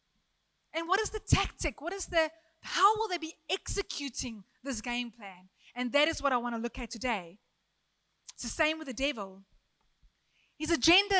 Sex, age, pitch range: female, 20-39, 230-325 Hz